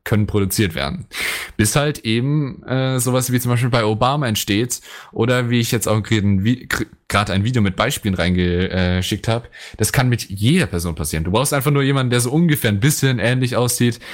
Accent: German